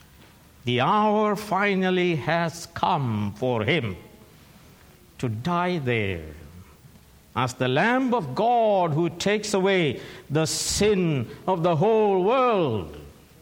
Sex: male